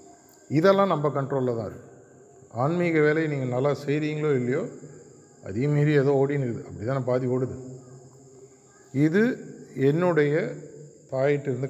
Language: Tamil